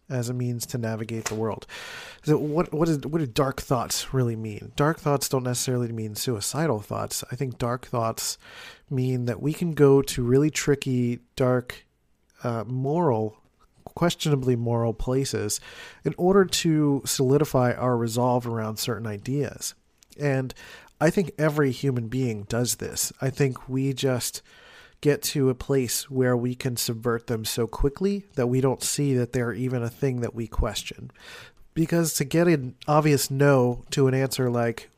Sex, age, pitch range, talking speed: male, 40-59, 120-140 Hz, 165 wpm